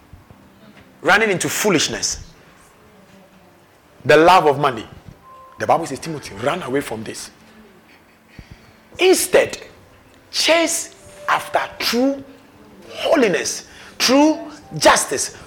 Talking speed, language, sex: 85 wpm, English, male